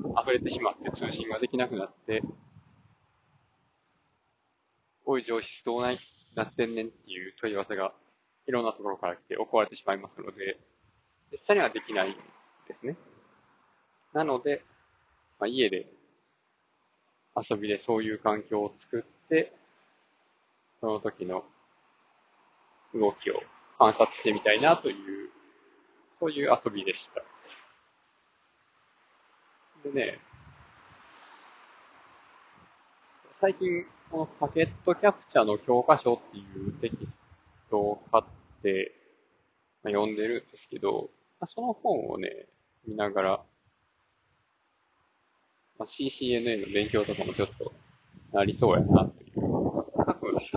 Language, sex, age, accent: Japanese, male, 20-39, native